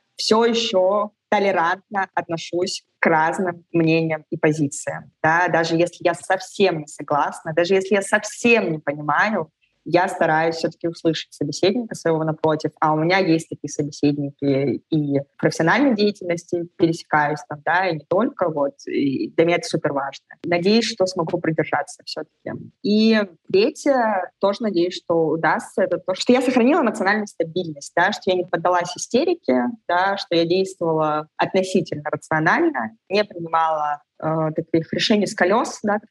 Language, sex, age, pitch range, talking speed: Russian, female, 20-39, 155-195 Hz, 150 wpm